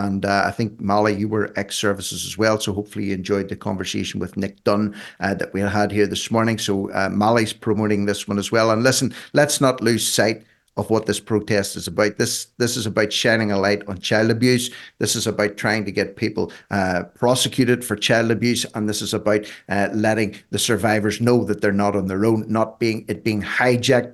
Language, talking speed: English, 220 wpm